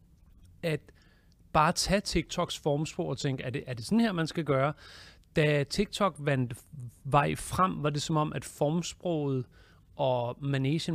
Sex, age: male, 30-49